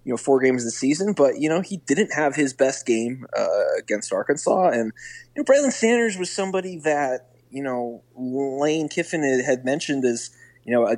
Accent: American